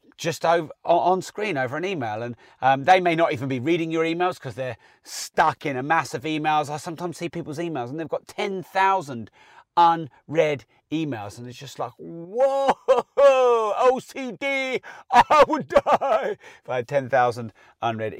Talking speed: 165 wpm